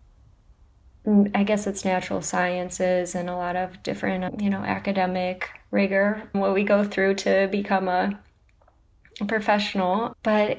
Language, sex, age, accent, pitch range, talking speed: English, female, 20-39, American, 185-205 Hz, 130 wpm